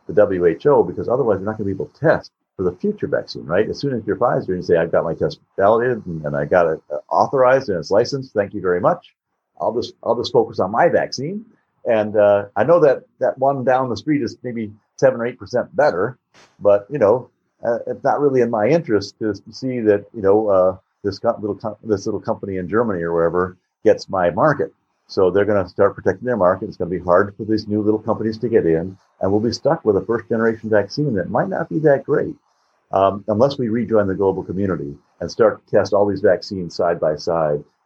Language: English